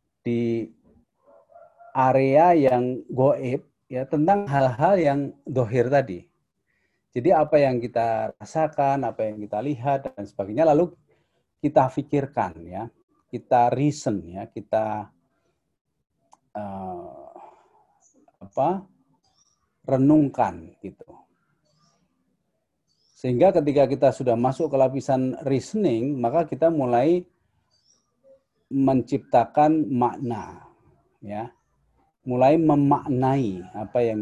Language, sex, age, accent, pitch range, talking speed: Indonesian, male, 40-59, native, 115-155 Hz, 90 wpm